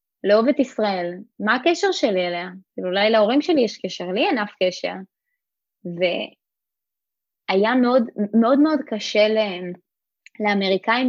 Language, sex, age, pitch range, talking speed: Hebrew, female, 20-39, 190-245 Hz, 125 wpm